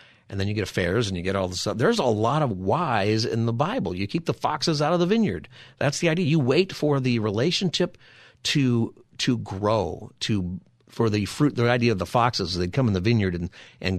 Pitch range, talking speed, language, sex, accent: 95-130 Hz, 230 wpm, English, male, American